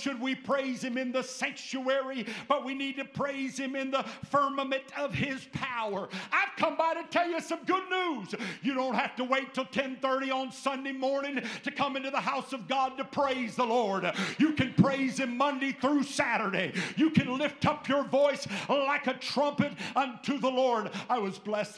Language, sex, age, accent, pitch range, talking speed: English, male, 50-69, American, 230-270 Hz, 195 wpm